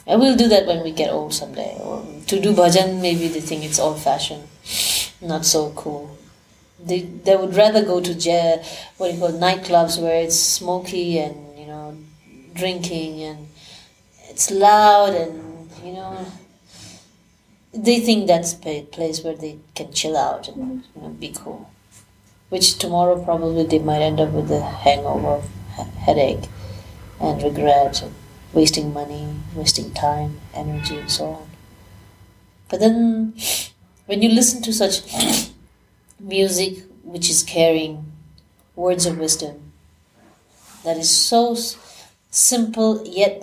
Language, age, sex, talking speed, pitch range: English, 30-49, female, 140 wpm, 140-185 Hz